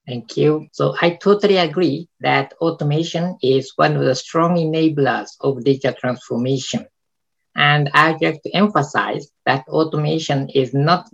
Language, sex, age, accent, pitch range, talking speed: English, male, 50-69, Japanese, 135-160 Hz, 135 wpm